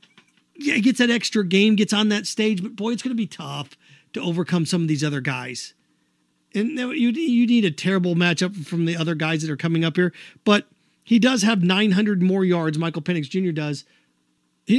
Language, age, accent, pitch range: English, 40-59, American, 145-200 Hz